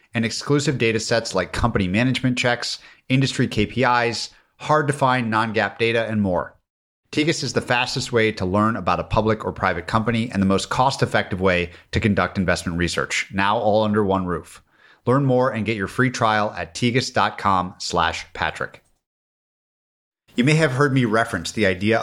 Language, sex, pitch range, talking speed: English, male, 95-120 Hz, 170 wpm